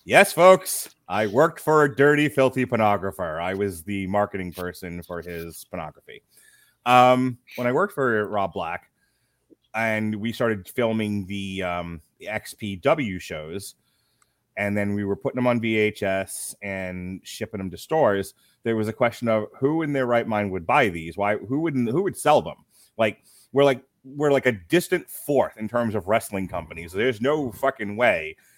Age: 30-49